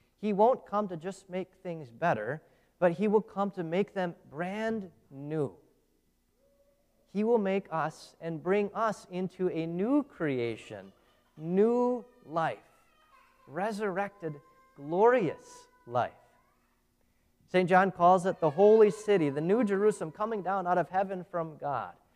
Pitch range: 165-215 Hz